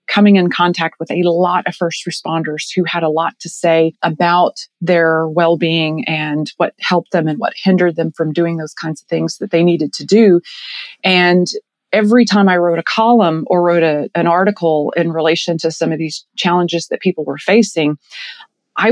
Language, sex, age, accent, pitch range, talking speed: English, female, 30-49, American, 155-180 Hz, 190 wpm